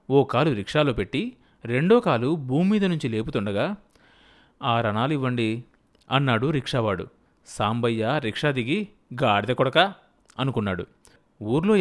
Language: Telugu